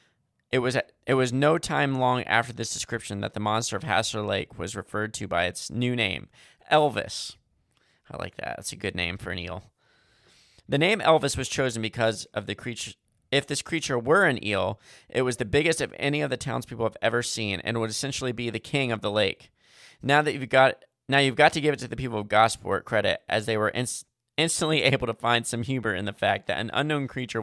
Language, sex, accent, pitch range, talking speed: English, male, American, 110-135 Hz, 225 wpm